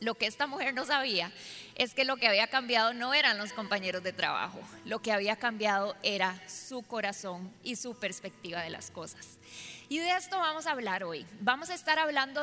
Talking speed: 205 wpm